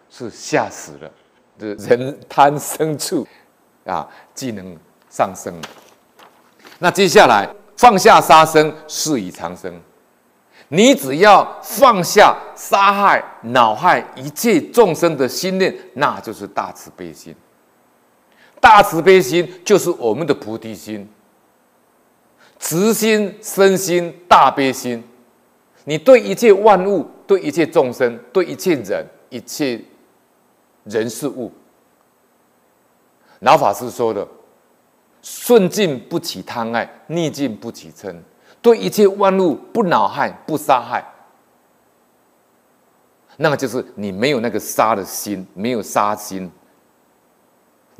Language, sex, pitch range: Chinese, male, 120-195 Hz